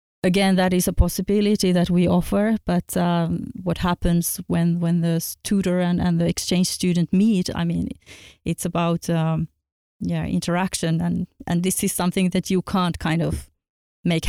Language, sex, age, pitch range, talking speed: Finnish, female, 30-49, 170-190 Hz, 170 wpm